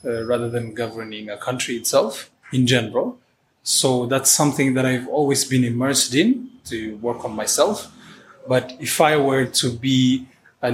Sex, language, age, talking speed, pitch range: male, English, 20-39, 160 wpm, 125-145 Hz